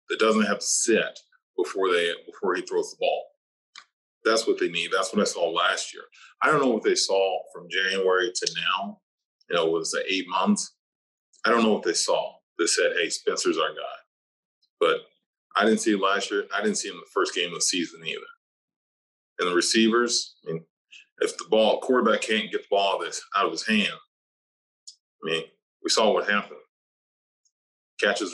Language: English